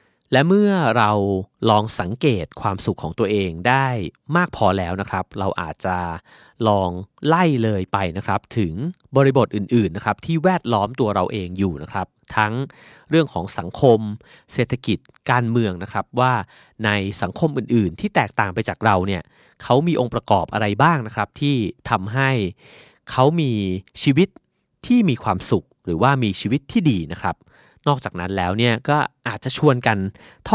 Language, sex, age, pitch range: Thai, male, 30-49, 100-135 Hz